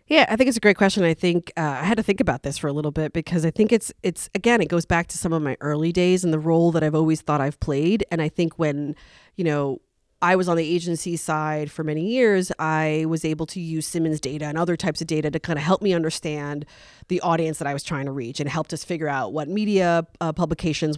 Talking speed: 270 wpm